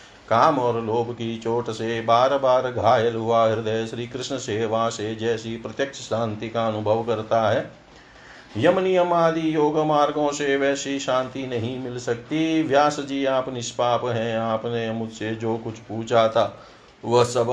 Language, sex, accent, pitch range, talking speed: Hindi, male, native, 115-135 Hz, 155 wpm